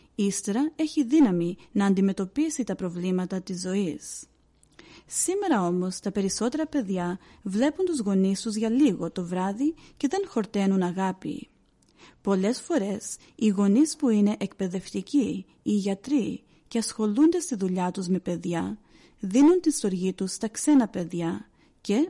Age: 40-59